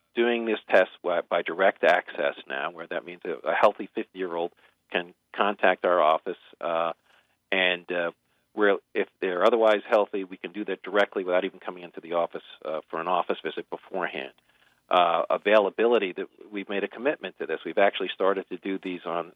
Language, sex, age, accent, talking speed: English, male, 40-59, American, 175 wpm